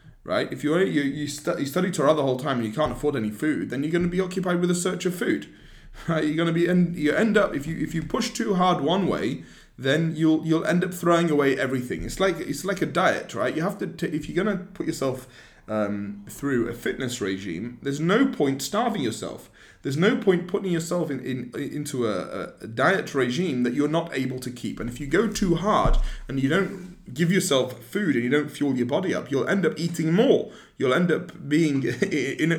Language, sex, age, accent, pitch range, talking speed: English, male, 30-49, British, 135-185 Hz, 240 wpm